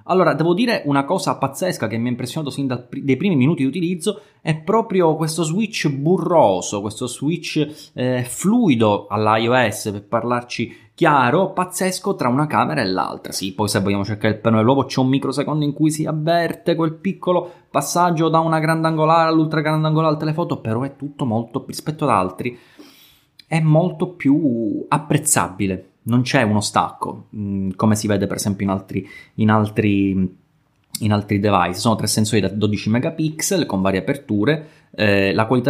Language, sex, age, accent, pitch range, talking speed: Italian, male, 20-39, native, 110-165 Hz, 170 wpm